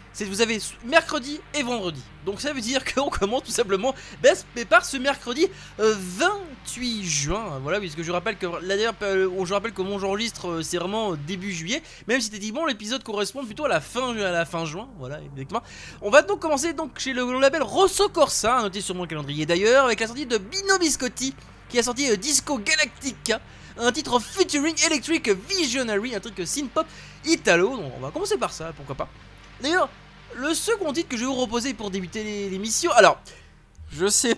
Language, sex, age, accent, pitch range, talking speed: French, male, 20-39, French, 190-280 Hz, 210 wpm